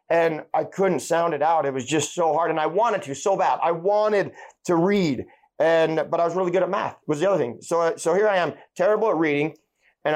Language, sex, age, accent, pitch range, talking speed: English, male, 30-49, American, 150-175 Hz, 250 wpm